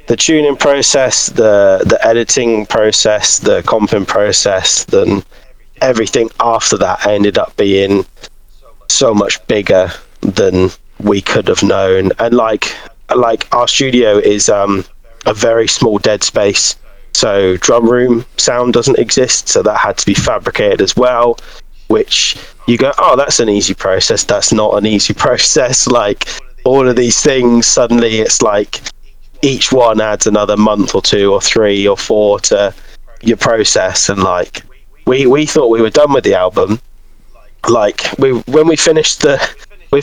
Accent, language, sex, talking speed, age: British, English, male, 155 wpm, 20-39